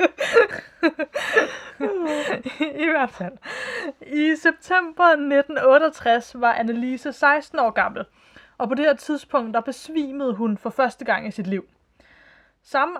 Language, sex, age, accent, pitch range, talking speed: Danish, female, 20-39, native, 220-280 Hz, 125 wpm